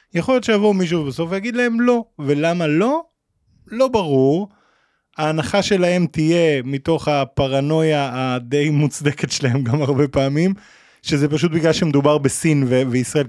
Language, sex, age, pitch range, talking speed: Hebrew, male, 20-39, 115-175 Hz, 130 wpm